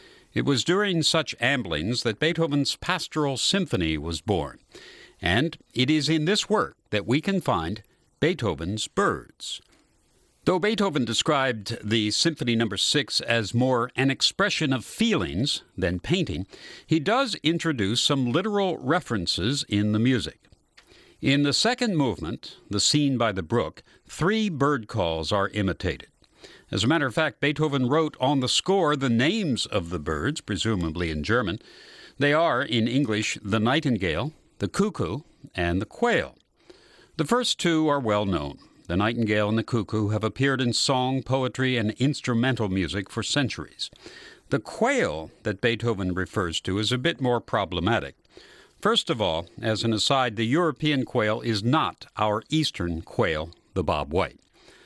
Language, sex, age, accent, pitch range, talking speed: English, male, 60-79, American, 105-150 Hz, 155 wpm